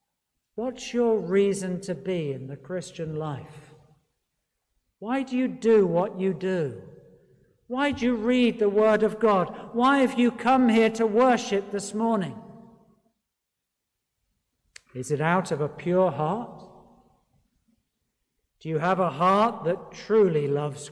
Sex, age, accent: male, 60-79, British